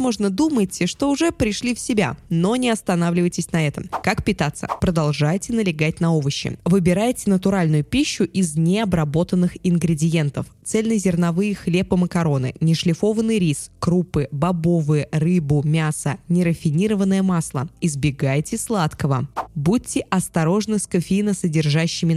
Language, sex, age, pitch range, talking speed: Russian, female, 20-39, 160-205 Hz, 110 wpm